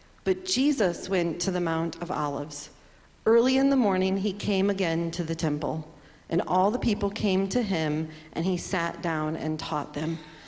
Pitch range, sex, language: 175-220 Hz, female, English